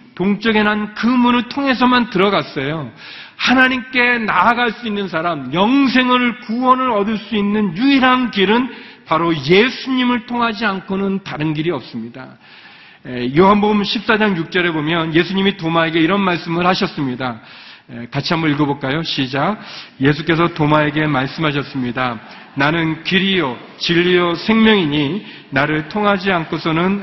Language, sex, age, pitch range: Korean, male, 40-59, 165-245 Hz